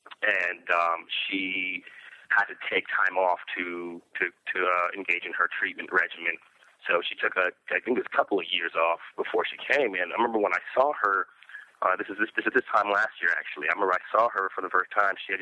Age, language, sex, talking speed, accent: 30-49, English, male, 245 wpm, American